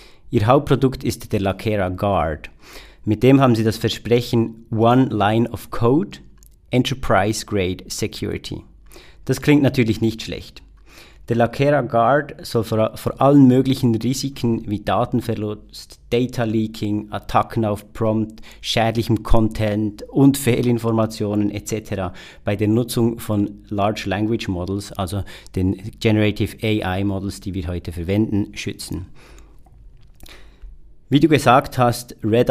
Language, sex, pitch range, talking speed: German, male, 105-120 Hz, 125 wpm